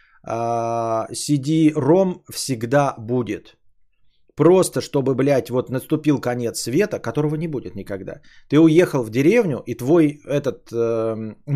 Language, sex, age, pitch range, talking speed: Bulgarian, male, 20-39, 120-175 Hz, 115 wpm